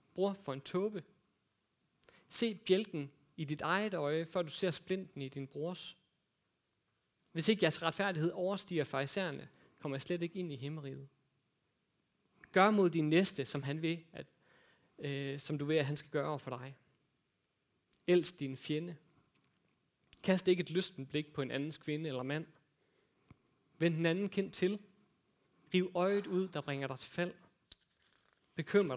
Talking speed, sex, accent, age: 155 wpm, male, native, 30-49